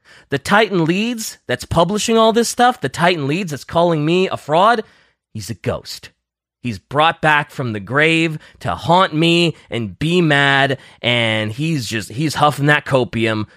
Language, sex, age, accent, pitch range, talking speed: English, male, 30-49, American, 120-170 Hz, 170 wpm